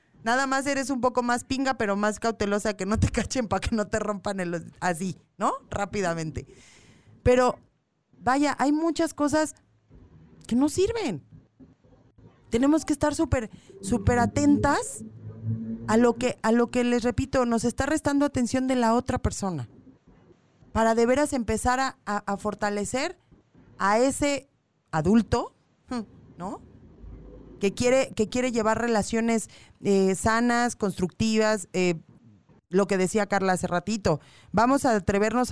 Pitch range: 190-255 Hz